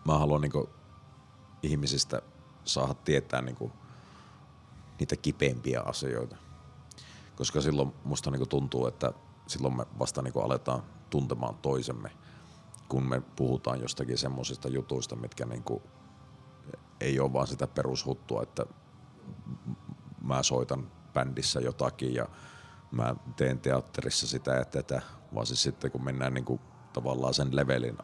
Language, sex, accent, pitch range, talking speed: Finnish, male, native, 65-70 Hz, 120 wpm